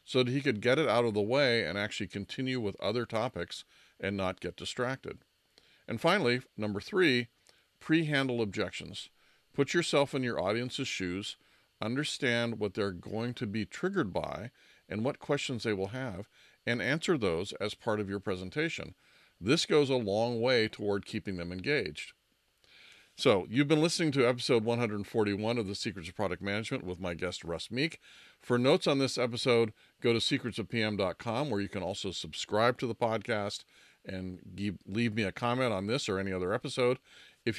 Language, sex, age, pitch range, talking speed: English, male, 50-69, 100-130 Hz, 175 wpm